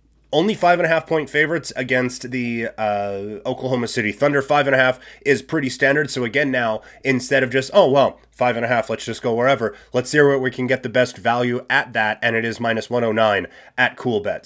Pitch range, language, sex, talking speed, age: 120-150 Hz, English, male, 190 wpm, 30-49